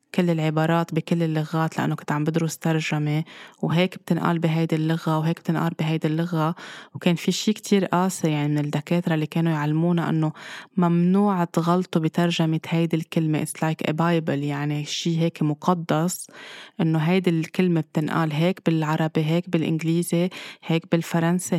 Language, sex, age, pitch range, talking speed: Arabic, female, 20-39, 155-175 Hz, 145 wpm